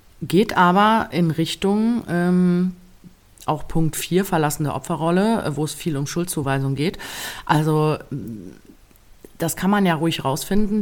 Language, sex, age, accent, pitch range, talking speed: German, female, 30-49, German, 145-180 Hz, 130 wpm